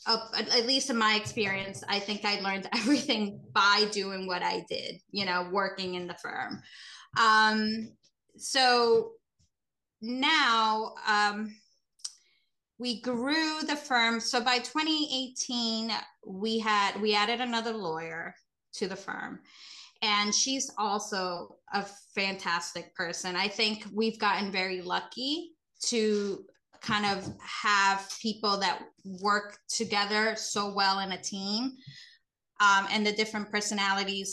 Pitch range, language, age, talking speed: 195-230 Hz, English, 20-39, 125 wpm